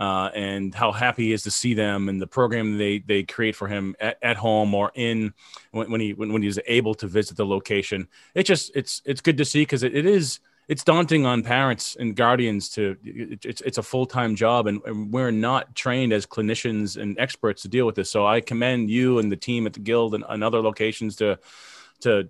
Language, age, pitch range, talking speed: English, 30-49, 110-130 Hz, 230 wpm